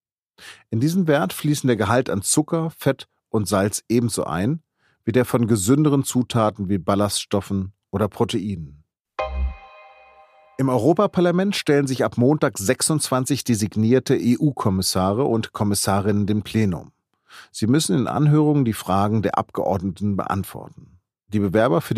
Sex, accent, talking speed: male, German, 130 wpm